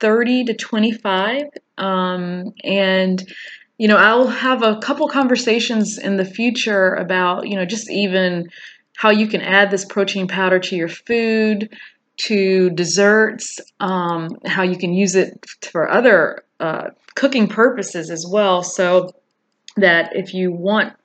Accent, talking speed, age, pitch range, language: American, 145 wpm, 30-49, 175-200 Hz, English